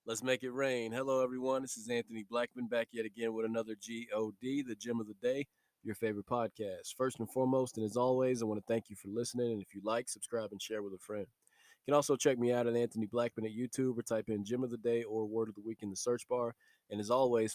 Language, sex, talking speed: English, male, 265 wpm